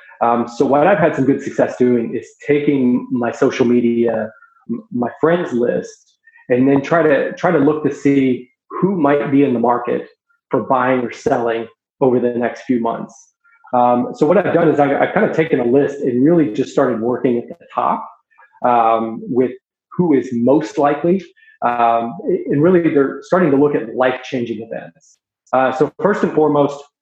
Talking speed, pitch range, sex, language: 185 wpm, 125-170 Hz, male, English